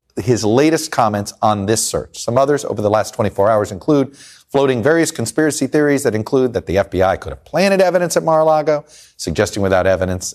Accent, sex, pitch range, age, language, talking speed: American, male, 105-155 Hz, 40-59, English, 185 wpm